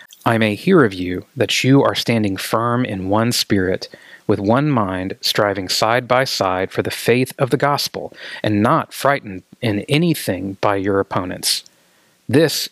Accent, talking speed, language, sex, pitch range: American, 165 wpm, English, male, 105-140 Hz